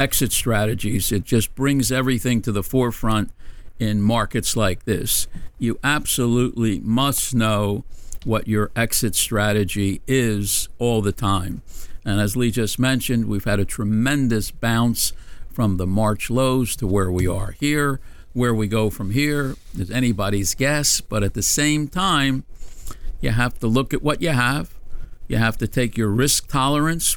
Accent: American